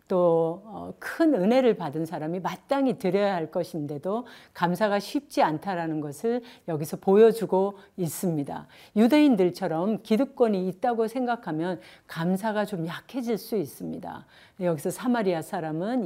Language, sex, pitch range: Korean, female, 165-225 Hz